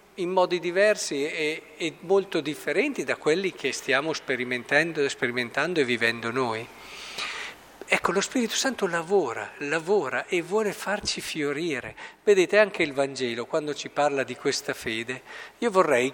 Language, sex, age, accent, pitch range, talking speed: Italian, male, 50-69, native, 125-170 Hz, 140 wpm